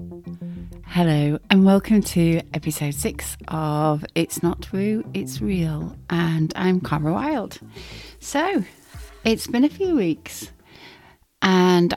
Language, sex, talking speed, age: English, female, 115 wpm, 30-49